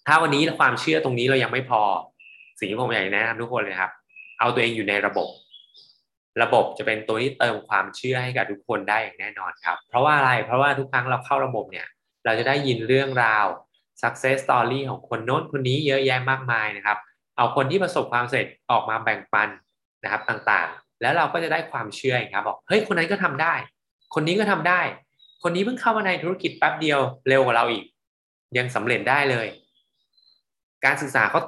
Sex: male